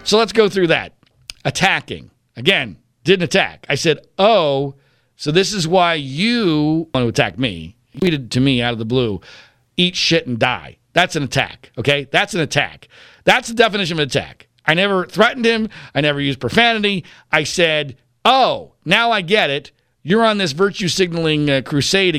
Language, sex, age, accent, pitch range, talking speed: English, male, 50-69, American, 135-200 Hz, 180 wpm